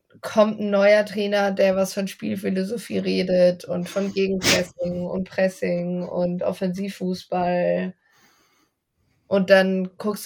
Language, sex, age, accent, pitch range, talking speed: German, female, 20-39, German, 175-205 Hz, 110 wpm